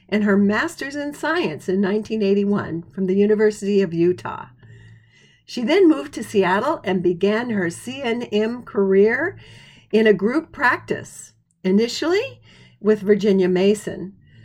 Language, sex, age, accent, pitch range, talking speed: English, female, 50-69, American, 180-215 Hz, 125 wpm